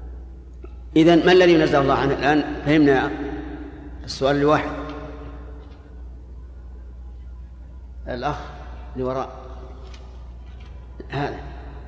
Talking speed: 75 wpm